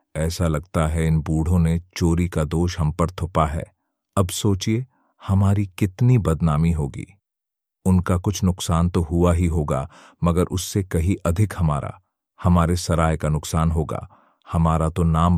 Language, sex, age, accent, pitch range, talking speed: Hindi, male, 40-59, native, 85-100 Hz, 150 wpm